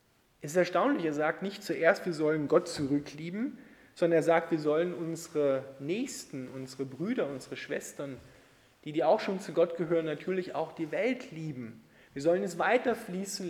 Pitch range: 150-190 Hz